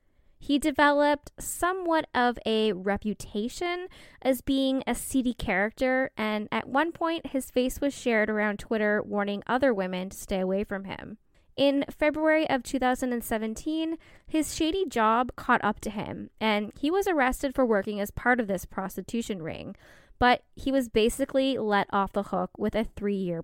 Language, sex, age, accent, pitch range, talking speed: English, female, 10-29, American, 205-270 Hz, 160 wpm